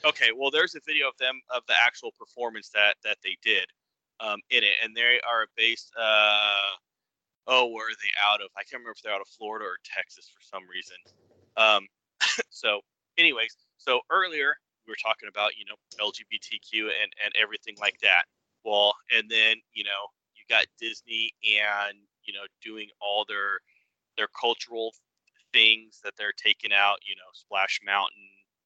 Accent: American